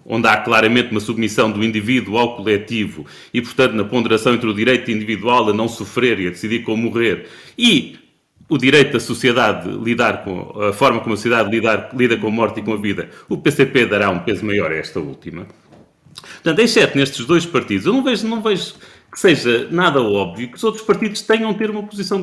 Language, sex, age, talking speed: Portuguese, male, 30-49, 215 wpm